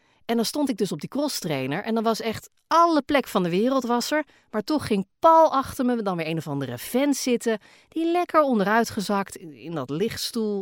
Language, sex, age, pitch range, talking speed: Dutch, female, 40-59, 160-240 Hz, 220 wpm